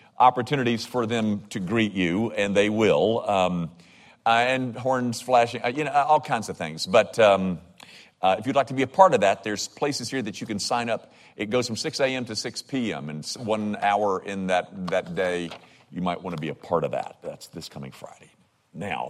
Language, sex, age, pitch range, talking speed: English, male, 50-69, 100-135 Hz, 210 wpm